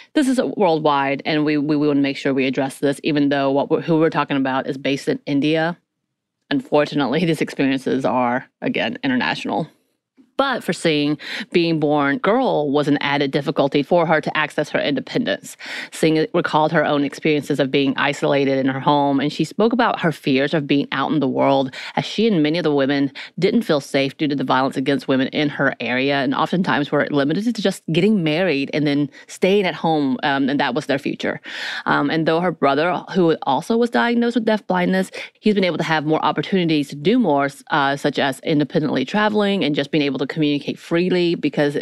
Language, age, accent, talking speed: English, 30-49, American, 205 wpm